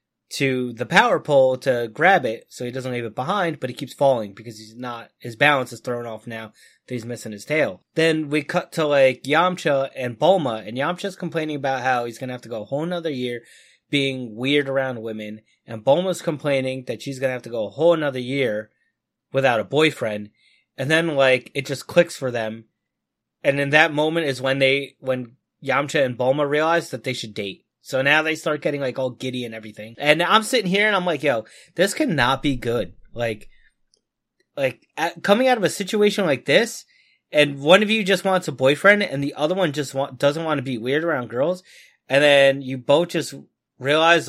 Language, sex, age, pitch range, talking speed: English, male, 20-39, 125-160 Hz, 210 wpm